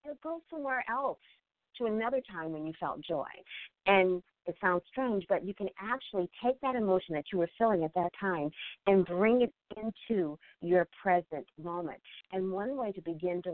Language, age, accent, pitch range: English, 40-59, American, 165-200 Hz